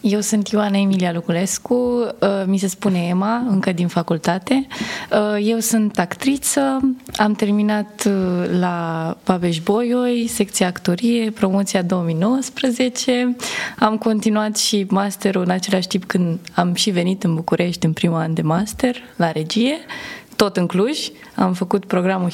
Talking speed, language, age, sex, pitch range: 130 wpm, Romanian, 20-39, female, 175-230 Hz